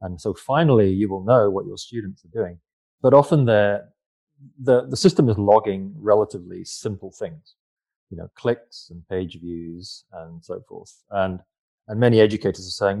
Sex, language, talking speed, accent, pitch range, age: male, English, 170 wpm, British, 90-110 Hz, 30-49